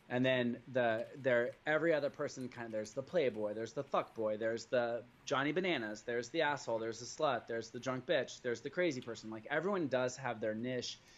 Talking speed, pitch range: 210 wpm, 115-135 Hz